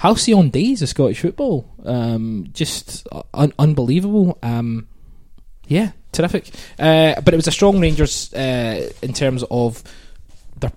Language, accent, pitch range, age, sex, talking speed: English, British, 110-145 Hz, 20-39, male, 140 wpm